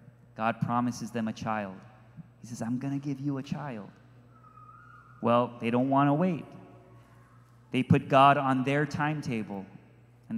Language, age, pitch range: English, 30-49, 120-145 Hz